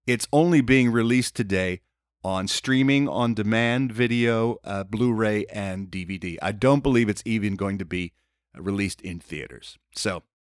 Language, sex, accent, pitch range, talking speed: English, male, American, 105-135 Hz, 145 wpm